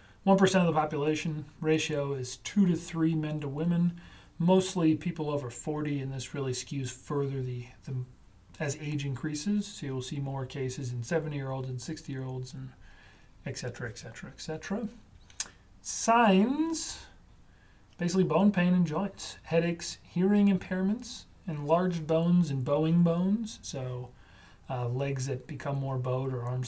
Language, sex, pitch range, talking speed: English, male, 130-170 Hz, 150 wpm